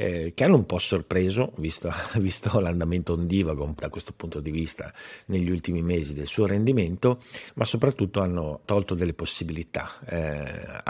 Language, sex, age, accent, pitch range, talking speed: Italian, male, 50-69, native, 85-105 Hz, 150 wpm